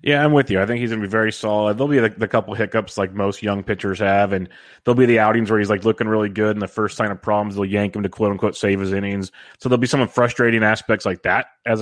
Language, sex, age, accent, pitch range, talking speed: English, male, 30-49, American, 100-110 Hz, 295 wpm